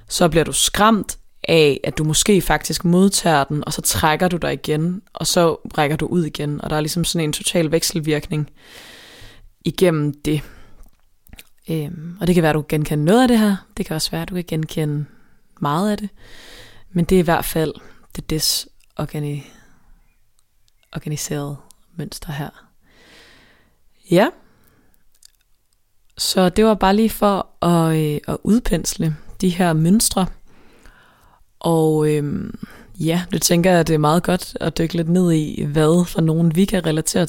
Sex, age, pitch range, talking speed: female, 20-39, 150-180 Hz, 165 wpm